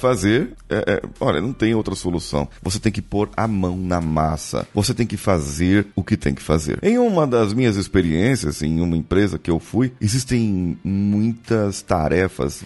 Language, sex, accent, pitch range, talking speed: Portuguese, male, Brazilian, 85-120 Hz, 175 wpm